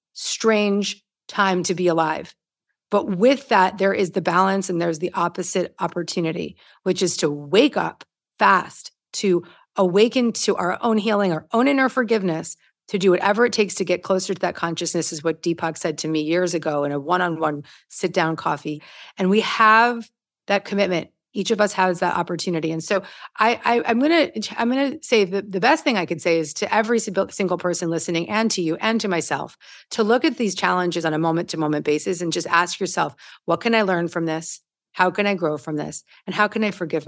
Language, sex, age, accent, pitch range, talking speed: English, female, 40-59, American, 170-225 Hz, 205 wpm